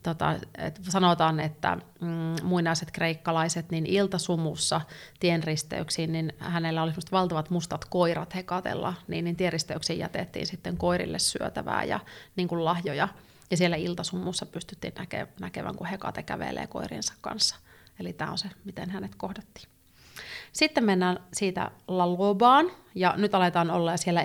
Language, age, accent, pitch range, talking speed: Finnish, 30-49, native, 160-185 Hz, 135 wpm